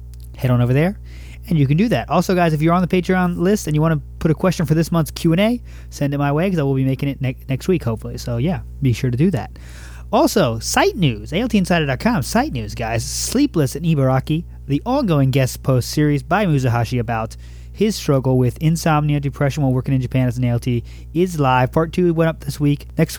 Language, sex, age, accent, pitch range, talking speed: English, male, 30-49, American, 120-160 Hz, 230 wpm